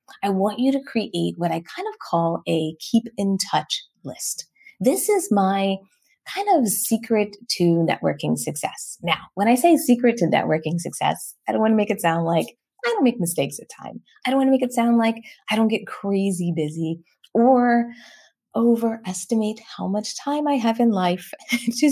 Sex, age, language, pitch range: female, 20-39, English, 170-235 Hz